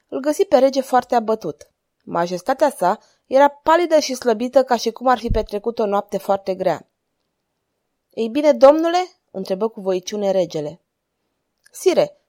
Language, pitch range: Romanian, 190-250 Hz